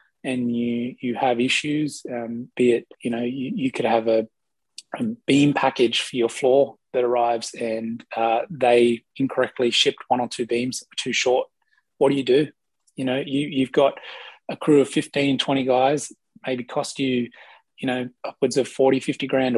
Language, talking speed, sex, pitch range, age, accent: English, 180 wpm, male, 120-135 Hz, 20-39, Australian